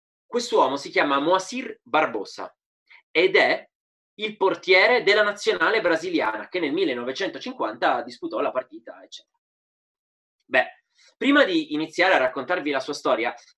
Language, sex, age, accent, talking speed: Italian, male, 30-49, native, 130 wpm